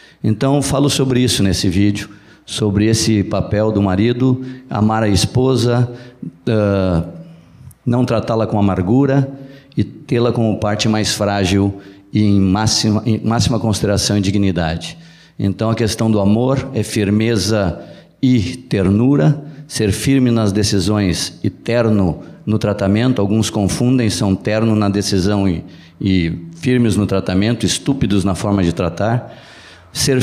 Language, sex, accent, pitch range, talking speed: Portuguese, male, Brazilian, 95-125 Hz, 130 wpm